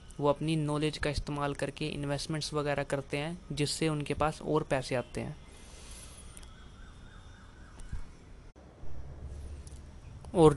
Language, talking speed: Hindi, 100 wpm